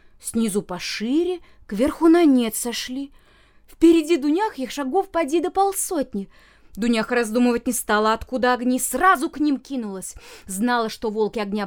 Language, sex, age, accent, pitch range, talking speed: Russian, female, 20-39, native, 220-315 Hz, 140 wpm